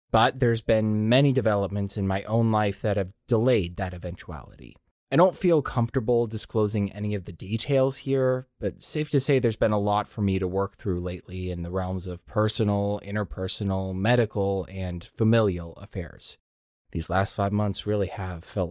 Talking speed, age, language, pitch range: 175 wpm, 20-39, English, 100-135 Hz